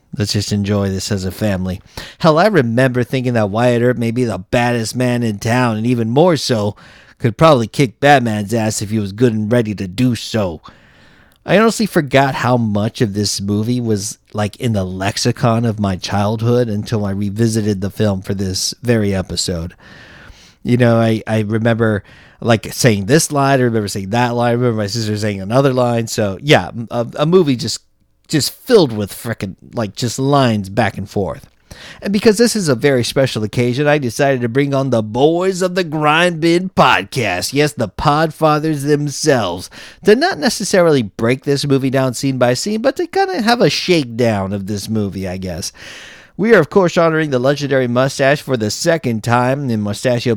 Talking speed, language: 195 wpm, English